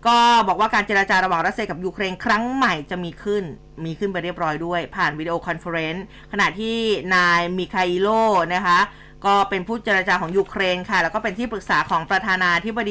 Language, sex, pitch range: Thai, female, 180-225 Hz